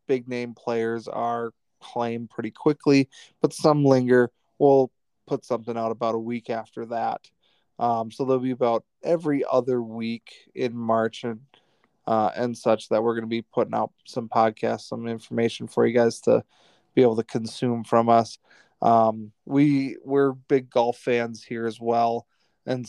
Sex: male